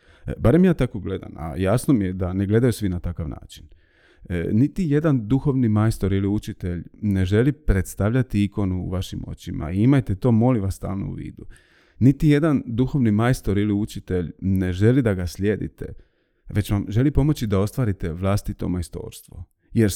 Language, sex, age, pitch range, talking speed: Croatian, male, 30-49, 95-125 Hz, 170 wpm